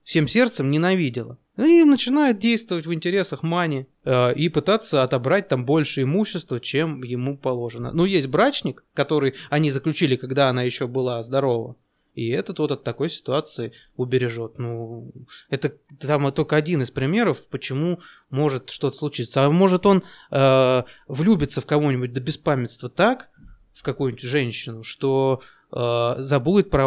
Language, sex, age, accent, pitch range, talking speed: Russian, male, 20-39, native, 125-165 Hz, 145 wpm